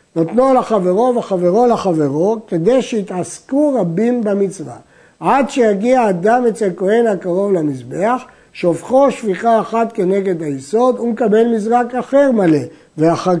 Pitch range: 170-235 Hz